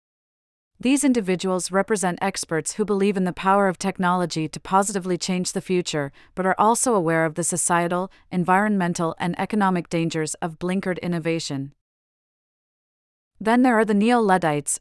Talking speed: 140 wpm